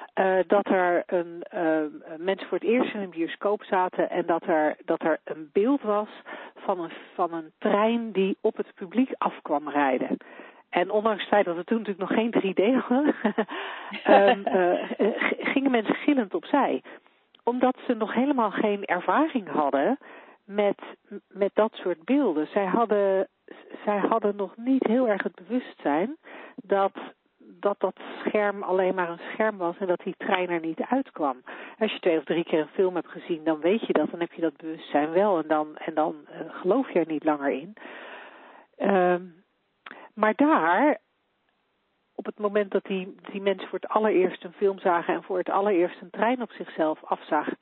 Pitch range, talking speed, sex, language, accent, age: 175-220 Hz, 180 wpm, female, Dutch, Dutch, 40-59